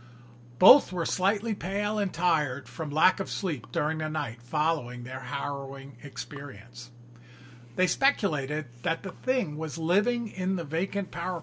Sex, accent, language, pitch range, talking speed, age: male, American, English, 120-195 Hz, 145 wpm, 50-69